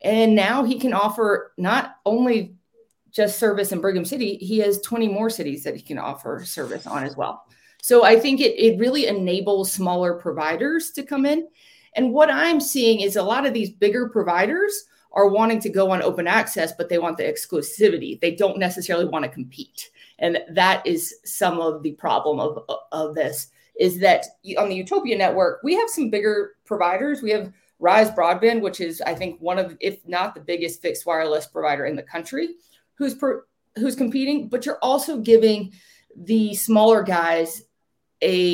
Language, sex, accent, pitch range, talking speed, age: English, female, American, 175-235 Hz, 185 wpm, 30-49